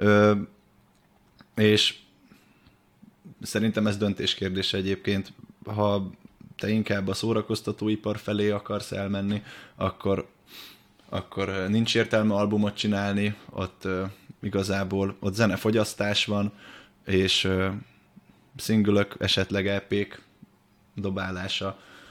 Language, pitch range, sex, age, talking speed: Hungarian, 95-110 Hz, male, 20-39, 90 wpm